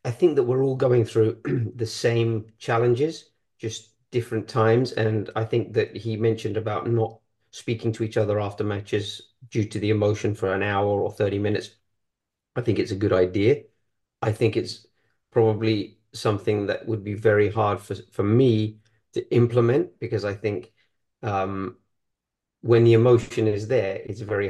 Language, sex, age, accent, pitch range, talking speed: English, male, 40-59, British, 100-115 Hz, 170 wpm